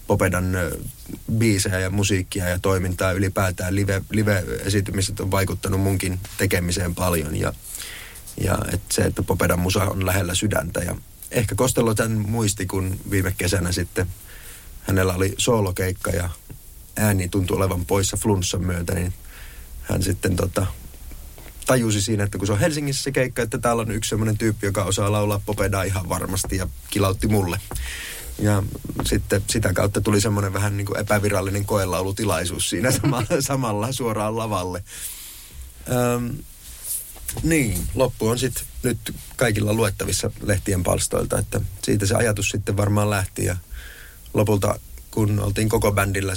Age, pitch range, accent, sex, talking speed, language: 30-49, 95-105 Hz, native, male, 140 wpm, Finnish